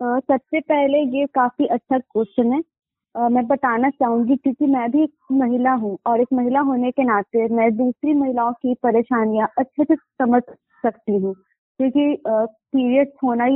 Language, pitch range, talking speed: Hindi, 235-280 Hz, 155 wpm